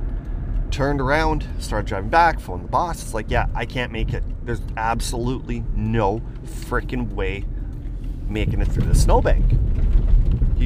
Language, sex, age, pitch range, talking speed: English, male, 30-49, 80-120 Hz, 145 wpm